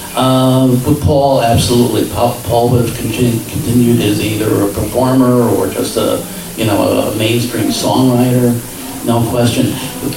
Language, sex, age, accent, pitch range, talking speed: English, male, 50-69, American, 120-140 Hz, 140 wpm